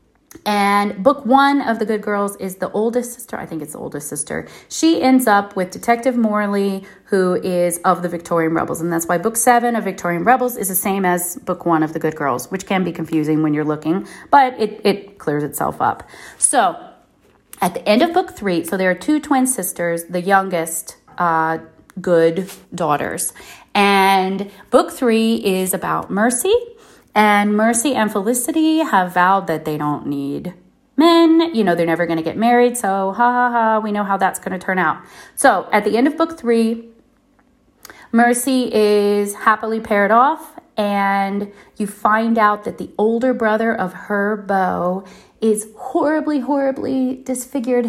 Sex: female